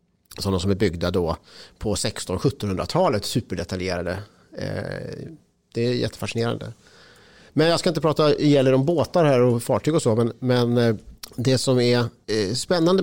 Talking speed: 145 wpm